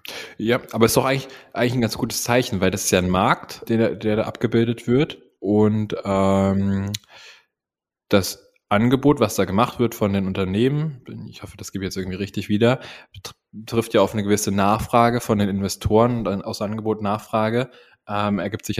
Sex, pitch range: male, 90-105 Hz